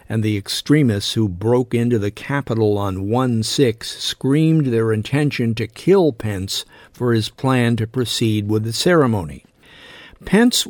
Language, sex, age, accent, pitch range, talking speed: English, male, 50-69, American, 110-135 Hz, 140 wpm